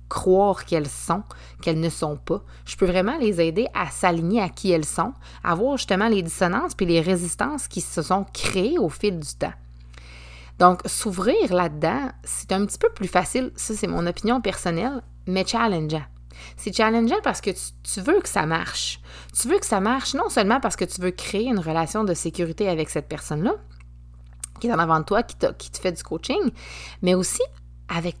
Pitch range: 155-210 Hz